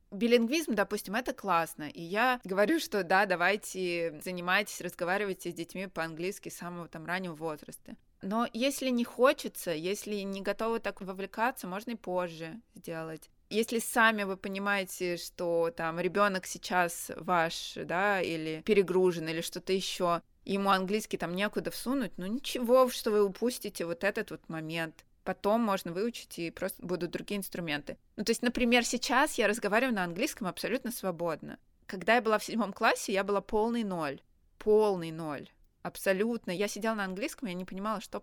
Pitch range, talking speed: 180-225 Hz, 160 wpm